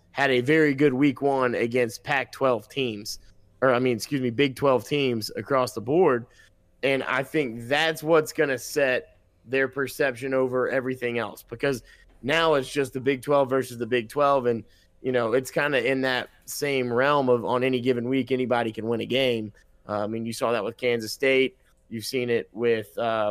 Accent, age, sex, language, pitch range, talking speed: American, 20-39, male, English, 120-140 Hz, 200 wpm